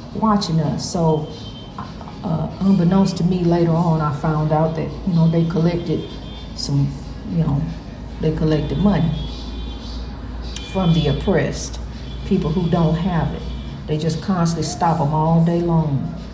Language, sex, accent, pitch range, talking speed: English, female, American, 160-210 Hz, 145 wpm